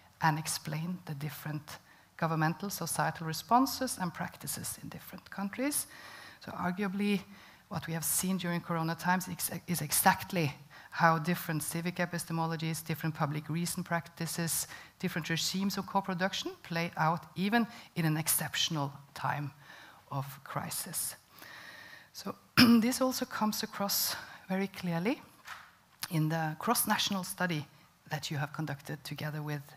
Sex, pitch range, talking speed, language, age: female, 150-185 Hz, 125 wpm, English, 50-69